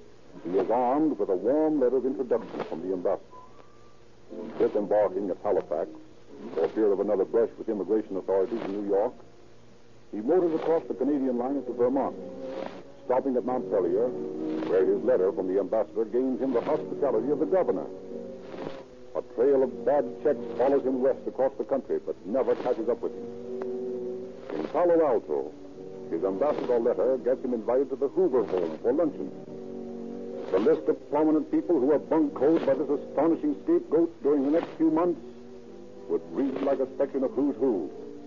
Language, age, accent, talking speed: English, 60-79, American, 170 wpm